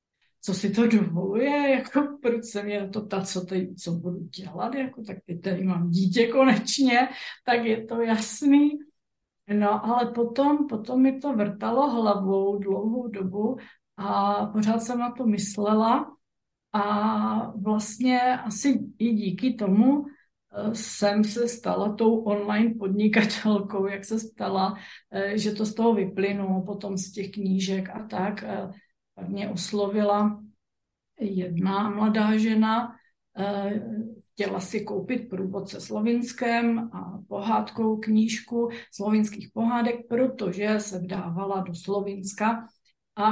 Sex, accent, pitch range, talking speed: female, native, 195-235 Hz, 125 wpm